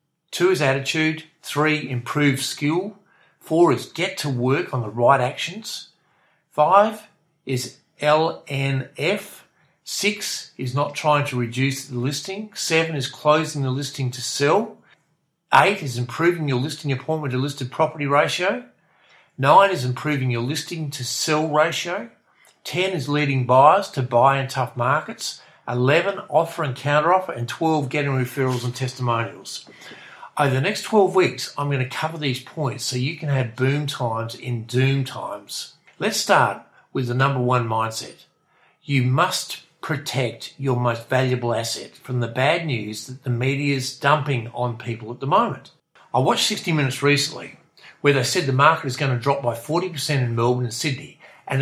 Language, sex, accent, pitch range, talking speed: English, male, Australian, 125-155 Hz, 160 wpm